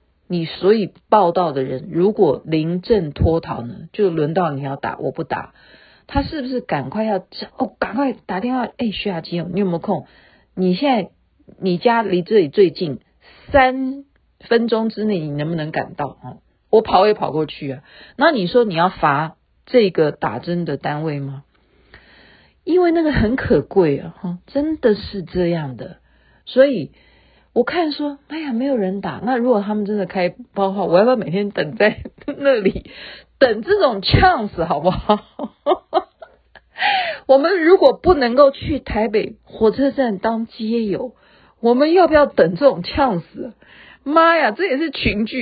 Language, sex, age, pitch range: Chinese, female, 40-59, 175-255 Hz